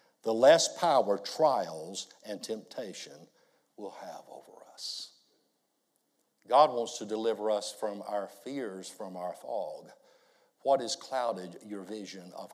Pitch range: 110-160 Hz